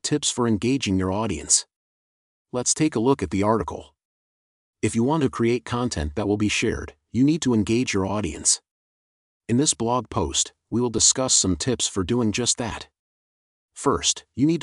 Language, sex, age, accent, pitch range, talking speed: English, male, 40-59, American, 95-125 Hz, 180 wpm